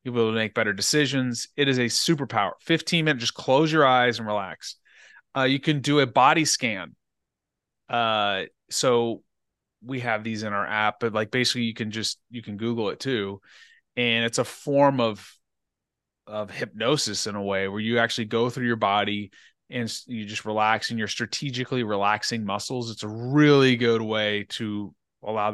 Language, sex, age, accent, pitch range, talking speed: English, male, 30-49, American, 110-140 Hz, 185 wpm